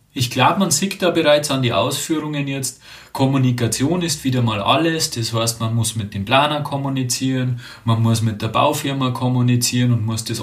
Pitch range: 105-135 Hz